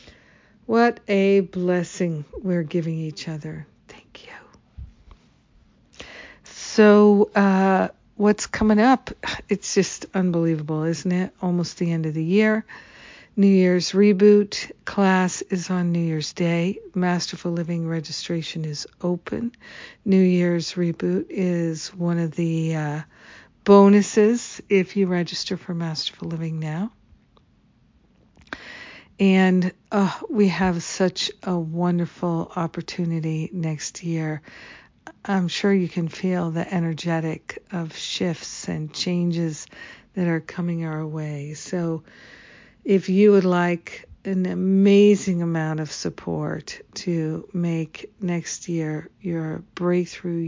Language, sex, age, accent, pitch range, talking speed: English, female, 60-79, American, 165-195 Hz, 115 wpm